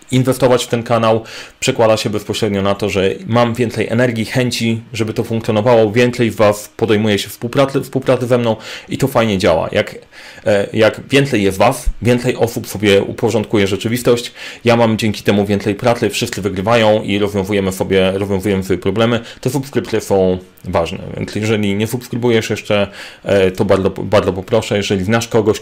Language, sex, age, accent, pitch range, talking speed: Polish, male, 30-49, native, 100-120 Hz, 160 wpm